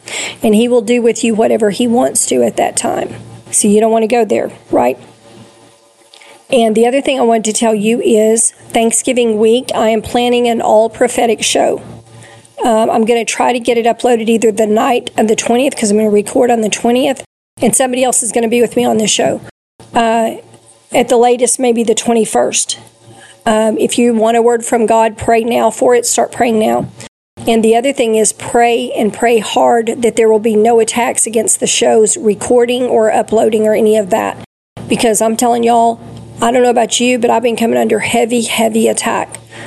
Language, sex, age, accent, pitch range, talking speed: English, female, 40-59, American, 220-240 Hz, 210 wpm